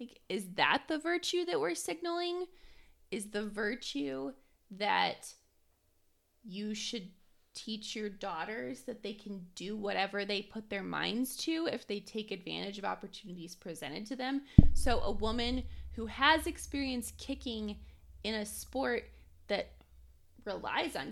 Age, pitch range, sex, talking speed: 20-39, 180-245 Hz, female, 135 wpm